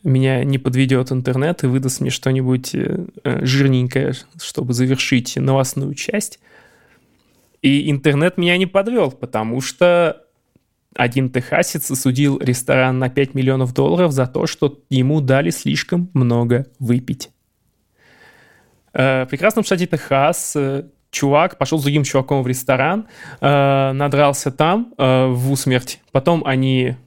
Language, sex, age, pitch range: Russian, male, 20-39, 130-155 Hz